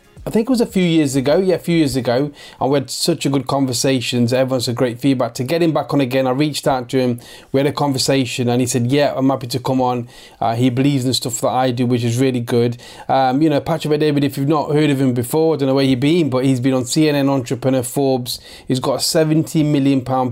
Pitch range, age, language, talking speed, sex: 125-145 Hz, 30-49, English, 270 wpm, male